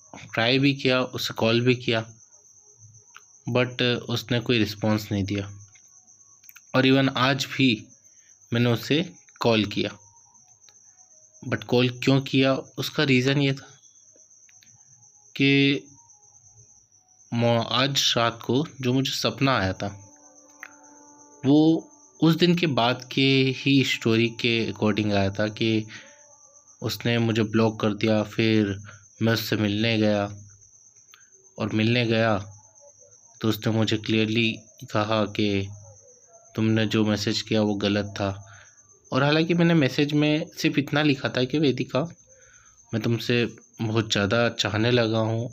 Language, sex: Hindi, male